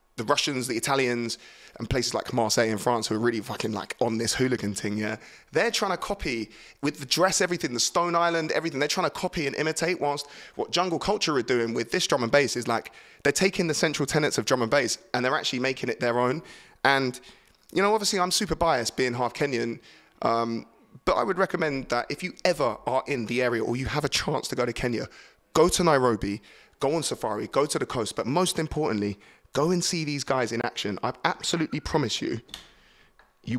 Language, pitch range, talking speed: English, 115-150 Hz, 220 wpm